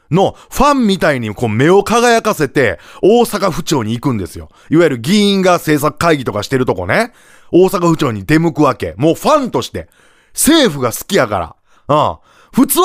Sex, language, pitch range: male, Japanese, 135-230 Hz